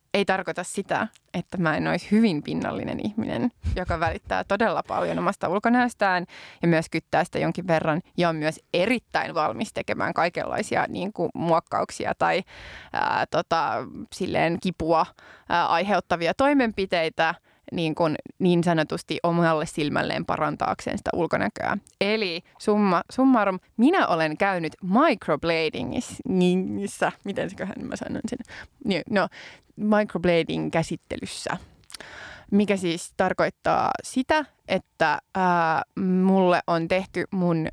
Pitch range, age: 165-200 Hz, 20-39